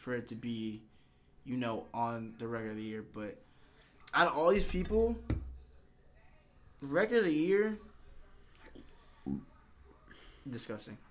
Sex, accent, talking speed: male, American, 125 wpm